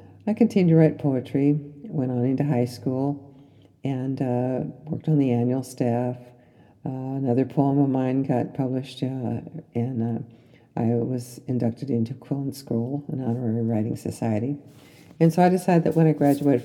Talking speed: 160 wpm